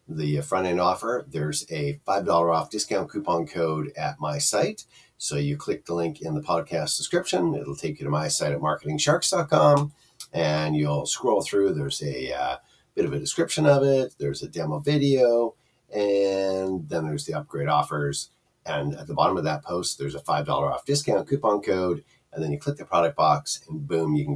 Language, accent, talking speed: English, American, 190 wpm